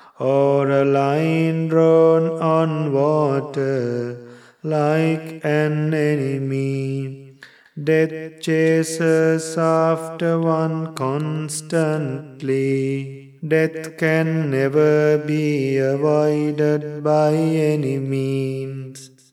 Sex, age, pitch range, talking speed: male, 30-49, 135-160 Hz, 70 wpm